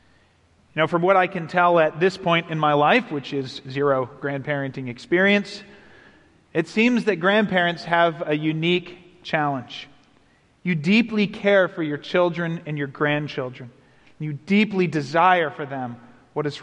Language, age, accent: English, 40-59, American